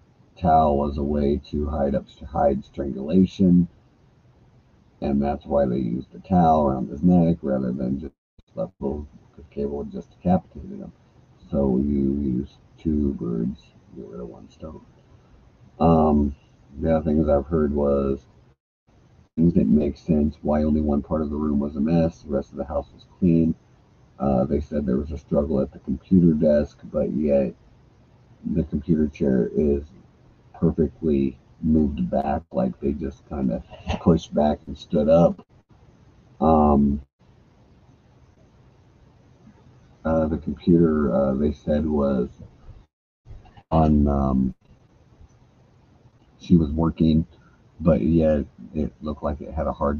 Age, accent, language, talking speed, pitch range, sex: 50-69, American, English, 140 wpm, 70-80 Hz, male